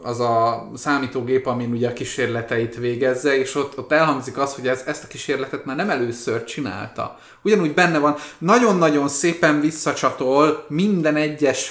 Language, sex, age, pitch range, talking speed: Hungarian, male, 20-39, 125-145 Hz, 155 wpm